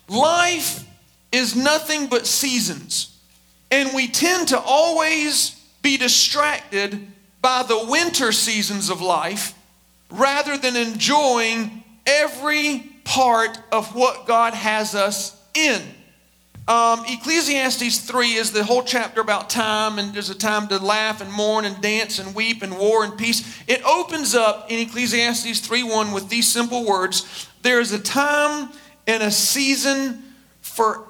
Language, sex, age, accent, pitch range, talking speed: English, male, 40-59, American, 215-275 Hz, 140 wpm